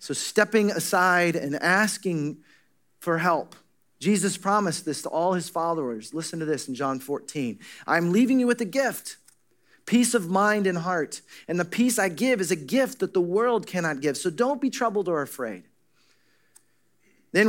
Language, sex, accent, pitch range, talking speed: English, male, American, 165-220 Hz, 175 wpm